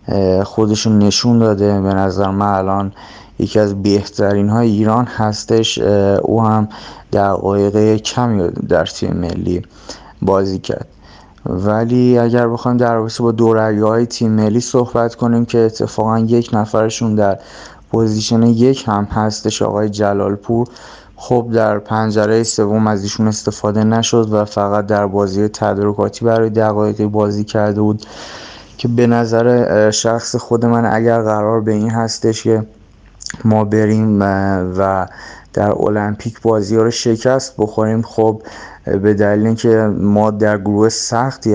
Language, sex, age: Persian, male, 30-49